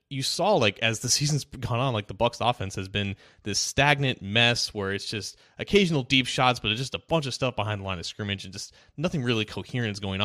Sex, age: male, 20-39